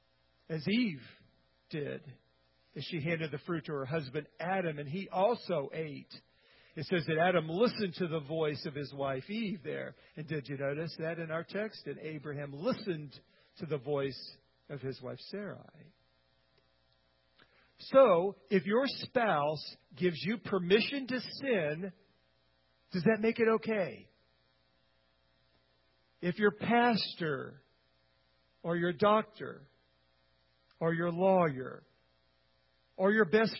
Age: 50-69